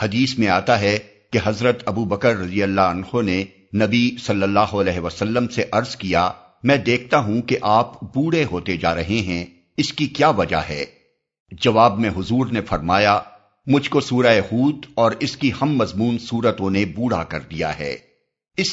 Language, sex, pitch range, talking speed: Urdu, male, 95-130 Hz, 180 wpm